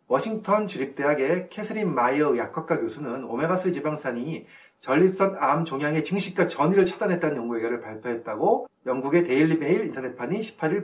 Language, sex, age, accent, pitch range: Korean, male, 30-49, native, 130-190 Hz